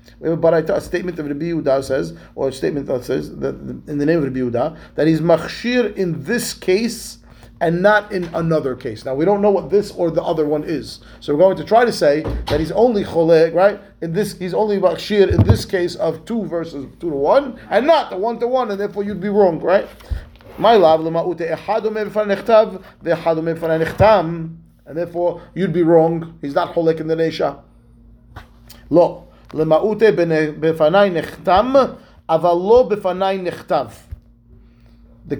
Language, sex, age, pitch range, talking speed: English, male, 30-49, 160-205 Hz, 160 wpm